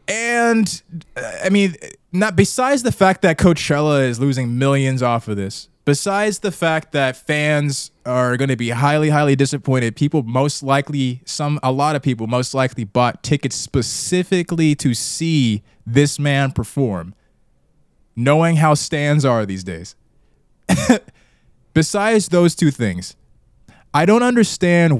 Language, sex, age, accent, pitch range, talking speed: English, male, 20-39, American, 125-170 Hz, 140 wpm